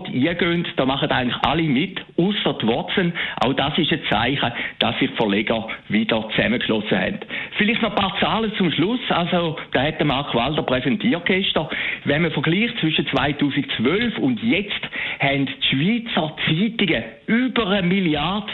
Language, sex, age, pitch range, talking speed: German, male, 60-79, 135-200 Hz, 155 wpm